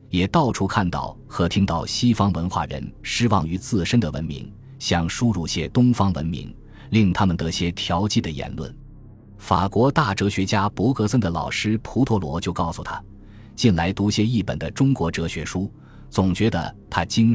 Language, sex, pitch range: Chinese, male, 85-115 Hz